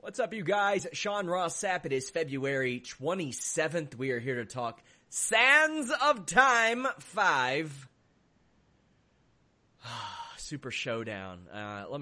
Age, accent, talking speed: 30-49, American, 120 wpm